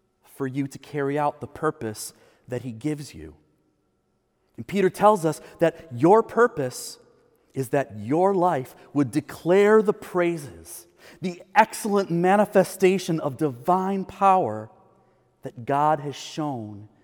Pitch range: 125-180 Hz